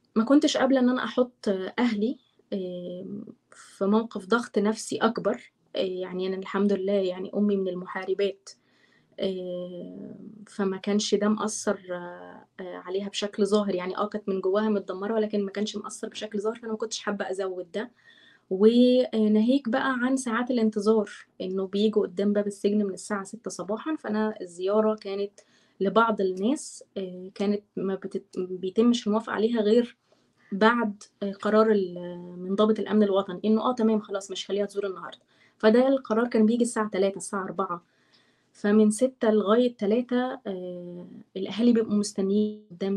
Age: 20-39